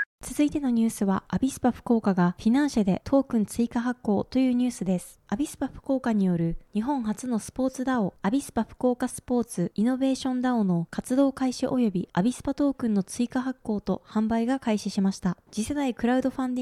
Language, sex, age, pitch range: Japanese, female, 20-39, 195-265 Hz